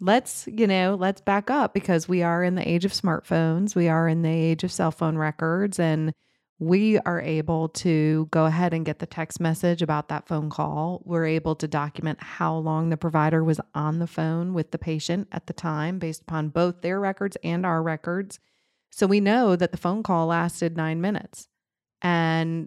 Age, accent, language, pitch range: 30-49, American, English, 155-180 Hz